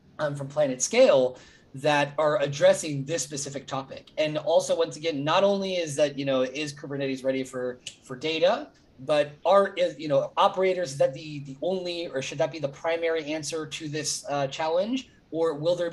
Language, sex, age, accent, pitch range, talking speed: English, male, 30-49, American, 140-175 Hz, 190 wpm